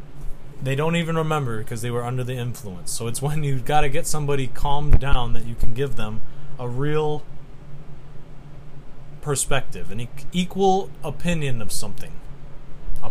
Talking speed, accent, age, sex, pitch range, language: 155 wpm, American, 20-39, male, 130-145 Hz, English